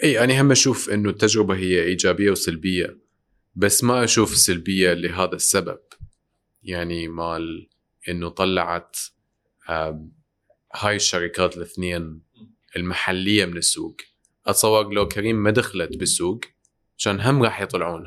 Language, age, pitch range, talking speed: Arabic, 30-49, 85-110 Hz, 115 wpm